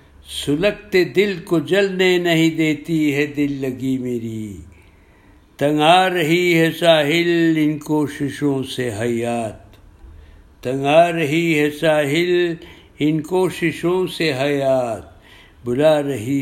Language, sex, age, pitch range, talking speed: Urdu, male, 60-79, 105-150 Hz, 110 wpm